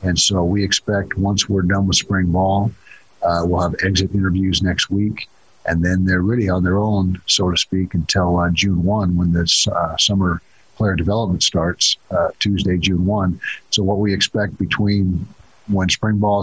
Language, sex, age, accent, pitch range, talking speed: English, male, 50-69, American, 85-100 Hz, 185 wpm